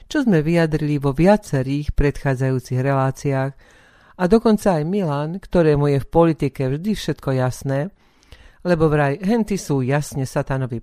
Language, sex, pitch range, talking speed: Slovak, female, 135-160 Hz, 135 wpm